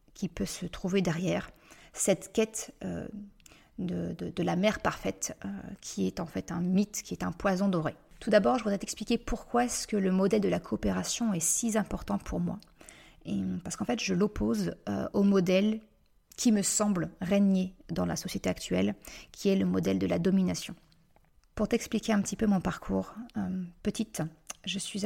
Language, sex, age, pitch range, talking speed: French, female, 30-49, 170-210 Hz, 190 wpm